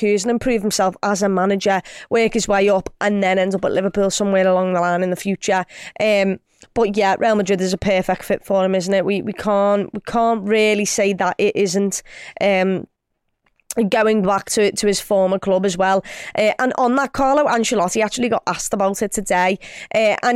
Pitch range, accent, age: 195-240 Hz, British, 20-39